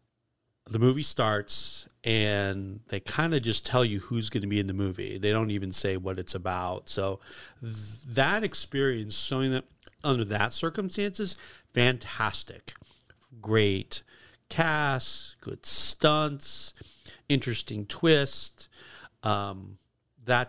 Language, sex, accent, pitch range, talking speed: English, male, American, 100-125 Hz, 120 wpm